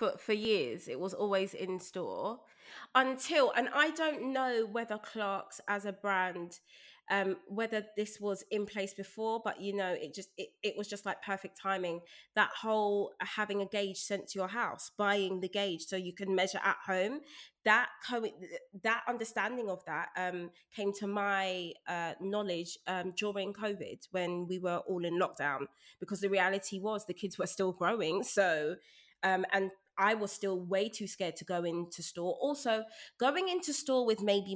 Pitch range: 190-275 Hz